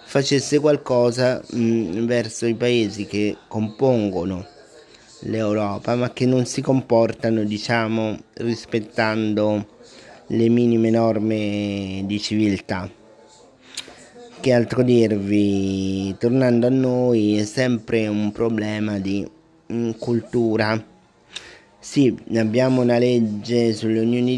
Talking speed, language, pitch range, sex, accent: 95 wpm, Italian, 105-120 Hz, male, native